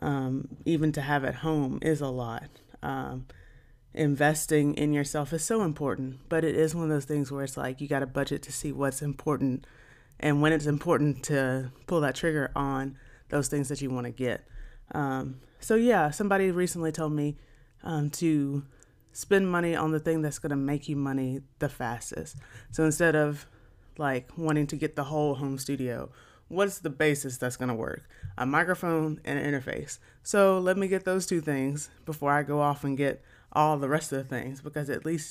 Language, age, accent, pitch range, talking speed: English, 30-49, American, 130-155 Hz, 195 wpm